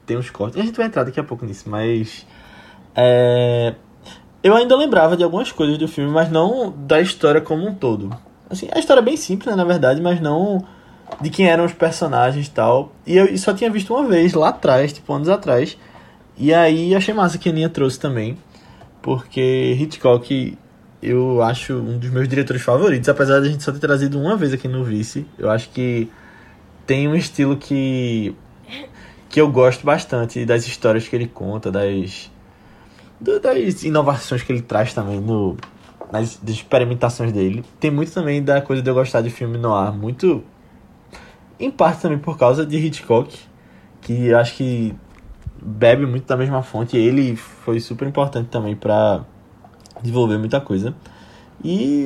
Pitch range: 120-165 Hz